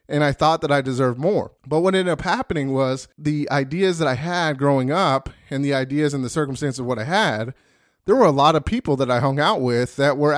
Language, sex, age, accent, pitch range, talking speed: English, male, 20-39, American, 135-175 Hz, 250 wpm